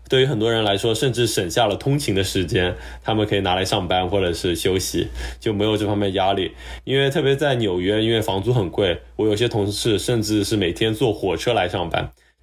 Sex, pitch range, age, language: male, 100-115 Hz, 20-39, Chinese